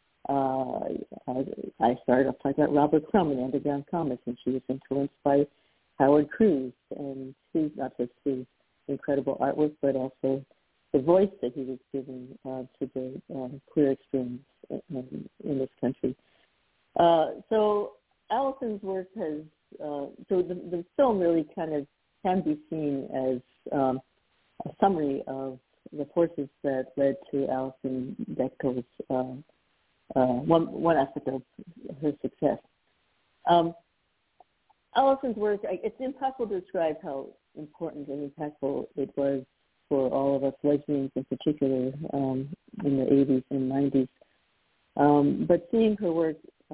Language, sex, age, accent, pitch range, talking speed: English, female, 60-79, American, 135-170 Hz, 140 wpm